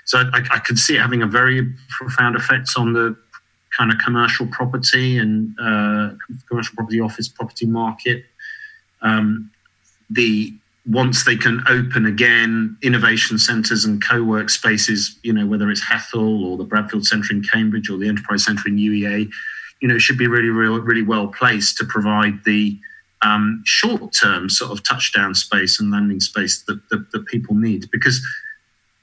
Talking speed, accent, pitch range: 165 wpm, British, 105-115 Hz